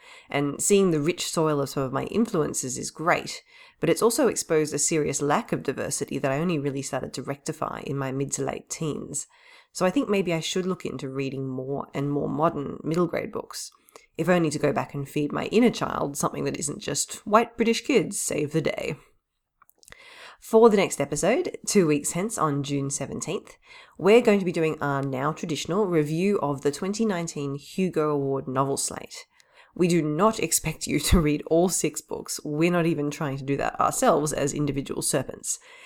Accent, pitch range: Australian, 140-210 Hz